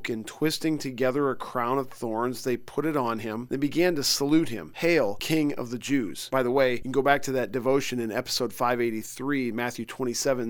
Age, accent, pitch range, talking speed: 40-59, American, 120-145 Hz, 210 wpm